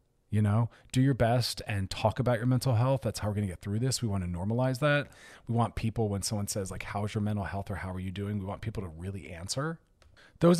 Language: English